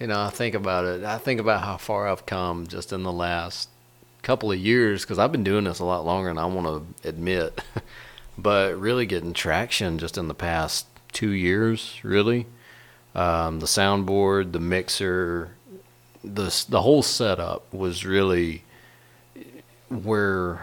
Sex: male